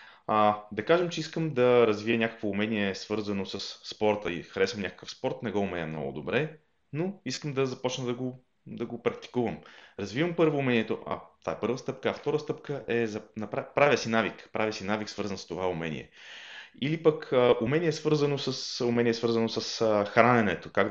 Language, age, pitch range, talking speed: Bulgarian, 30-49, 95-120 Hz, 195 wpm